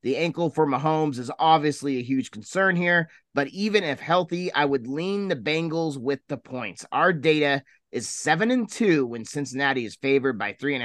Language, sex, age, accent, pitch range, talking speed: English, male, 30-49, American, 130-165 Hz, 195 wpm